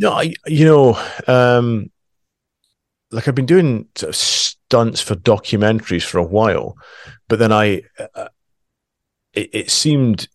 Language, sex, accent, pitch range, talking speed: English, male, British, 90-110 Hz, 140 wpm